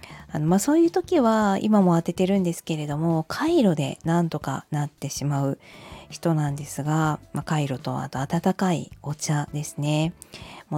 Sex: female